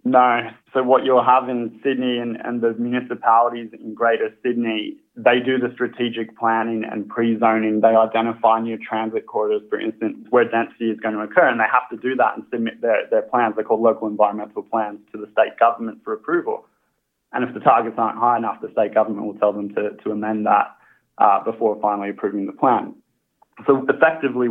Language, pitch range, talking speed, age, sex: English, 110-125 Hz, 200 wpm, 20-39, male